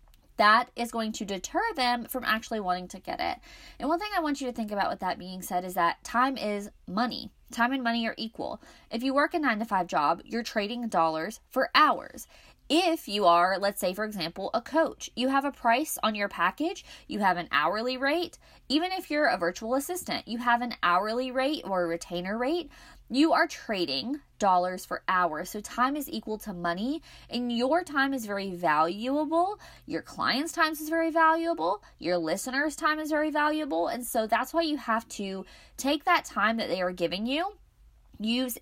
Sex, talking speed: female, 200 wpm